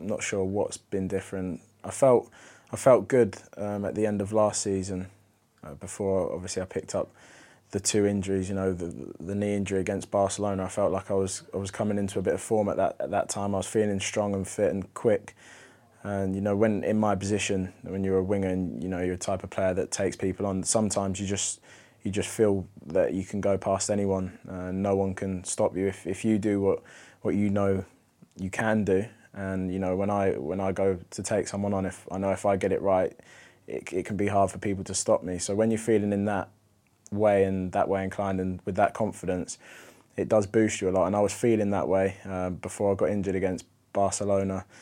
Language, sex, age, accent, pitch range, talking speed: English, male, 20-39, British, 95-105 Hz, 235 wpm